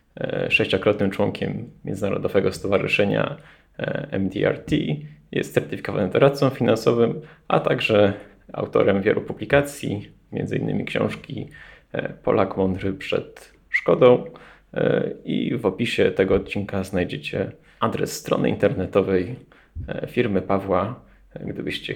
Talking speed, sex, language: 85 wpm, male, Polish